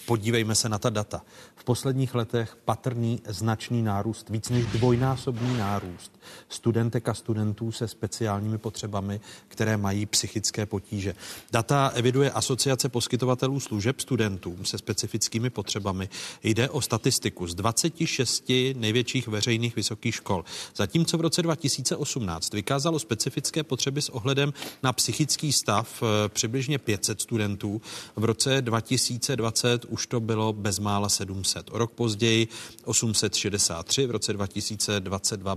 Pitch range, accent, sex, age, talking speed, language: 100-120 Hz, native, male, 40-59, 120 wpm, Czech